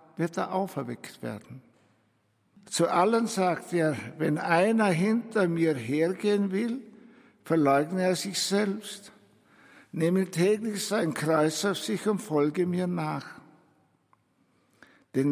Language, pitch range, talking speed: German, 145-195 Hz, 115 wpm